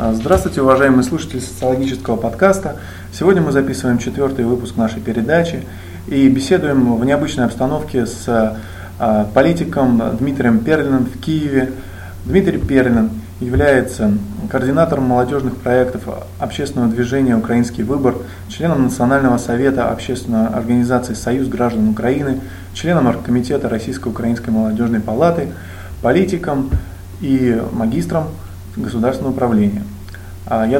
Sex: male